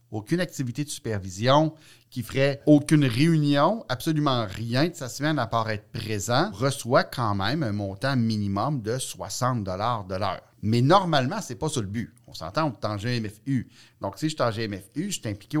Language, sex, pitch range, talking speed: French, male, 110-150 Hz, 190 wpm